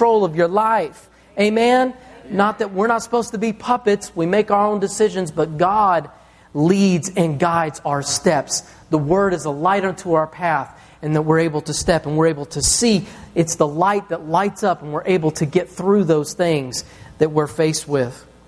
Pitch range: 160-195 Hz